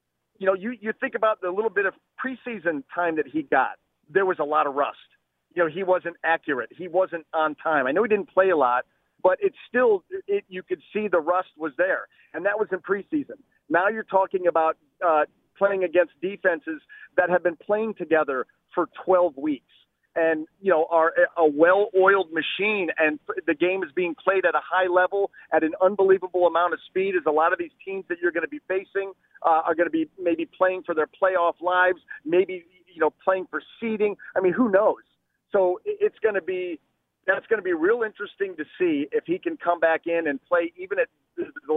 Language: English